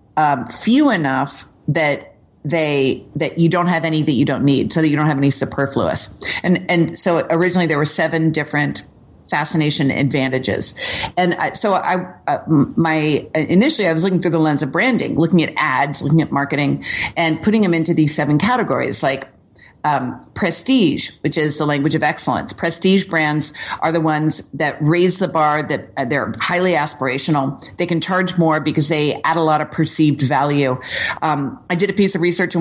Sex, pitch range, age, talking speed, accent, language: female, 145-170 Hz, 40-59, 190 wpm, American, English